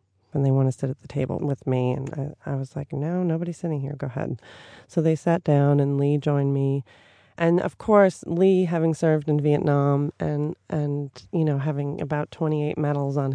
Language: English